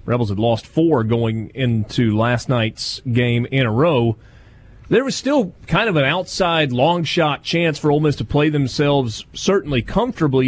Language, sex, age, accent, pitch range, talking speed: English, male, 30-49, American, 115-150 Hz, 165 wpm